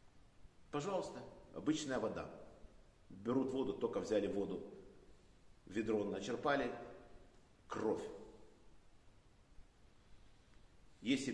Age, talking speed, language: 50-69, 65 wpm, Russian